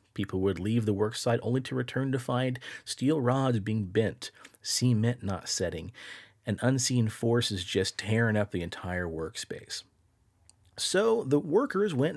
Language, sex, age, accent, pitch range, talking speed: English, male, 40-59, American, 100-135 Hz, 150 wpm